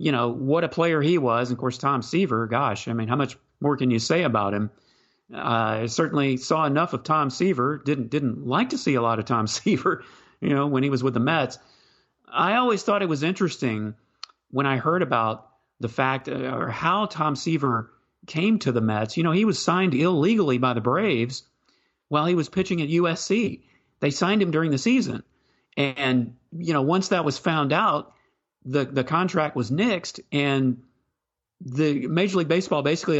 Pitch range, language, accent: 130-185 Hz, English, American